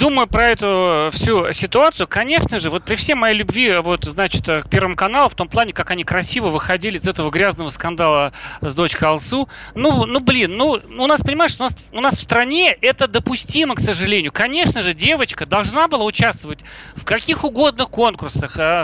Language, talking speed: Russian, 185 wpm